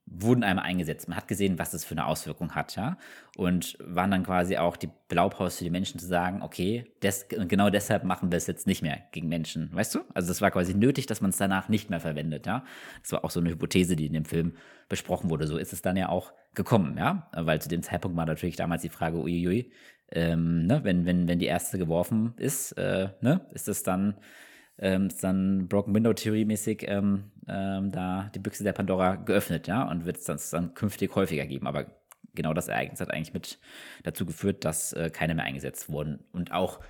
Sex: male